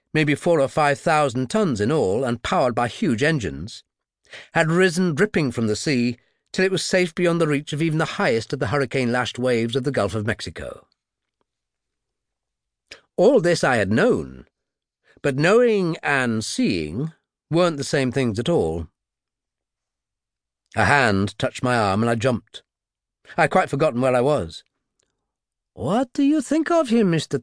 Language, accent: English, British